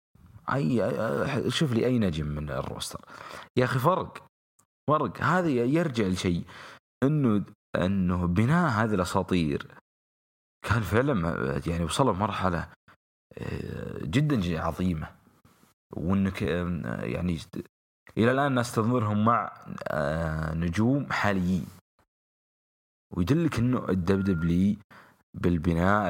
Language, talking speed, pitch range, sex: English, 90 wpm, 85-110 Hz, male